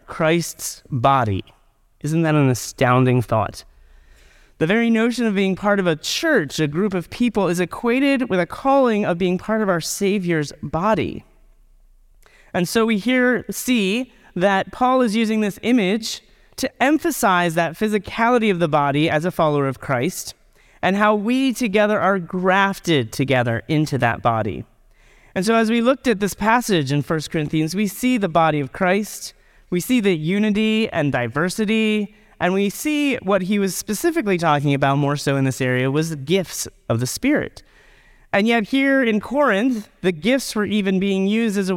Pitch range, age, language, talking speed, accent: 145-220 Hz, 30-49, English, 175 wpm, American